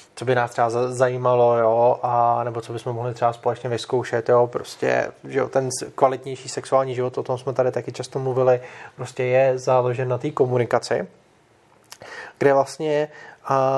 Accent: native